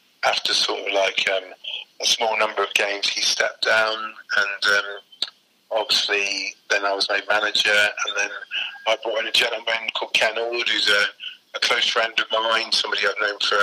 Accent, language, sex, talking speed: British, English, male, 185 wpm